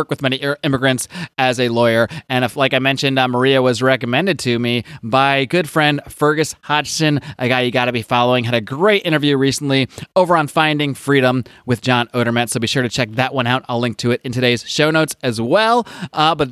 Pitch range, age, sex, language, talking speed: 125-175 Hz, 30-49, male, English, 220 wpm